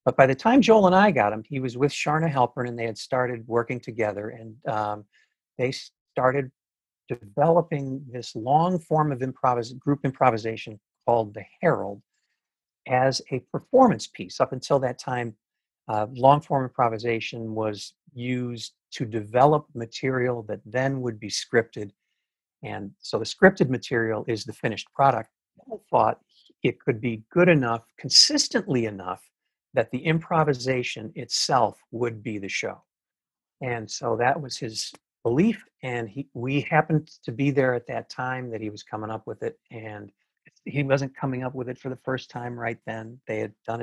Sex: male